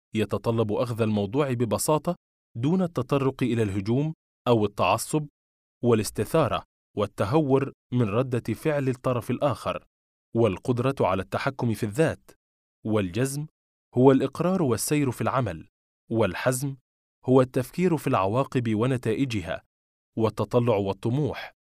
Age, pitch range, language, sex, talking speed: 20-39, 110-140 Hz, Arabic, male, 100 wpm